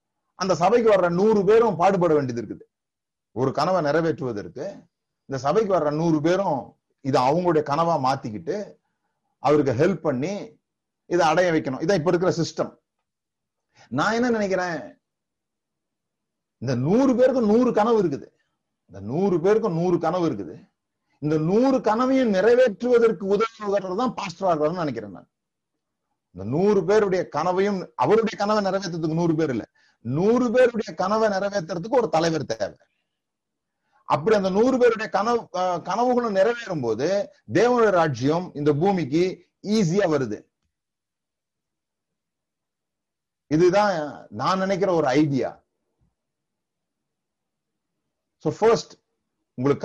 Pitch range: 155-215 Hz